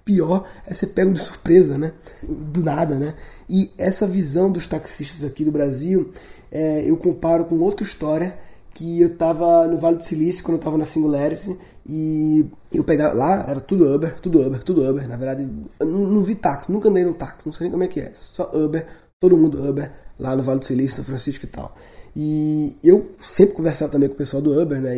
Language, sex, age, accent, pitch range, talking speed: Portuguese, male, 20-39, Brazilian, 145-180 Hz, 210 wpm